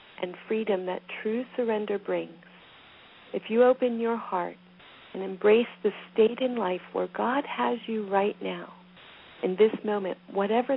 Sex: female